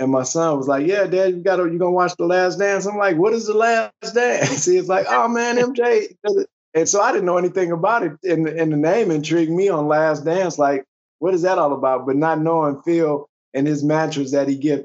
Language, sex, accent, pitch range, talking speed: English, male, American, 135-165 Hz, 245 wpm